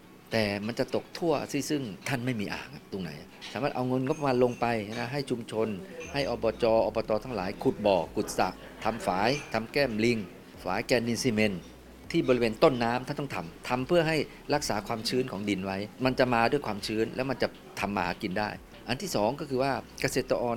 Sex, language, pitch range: male, Thai, 100-130 Hz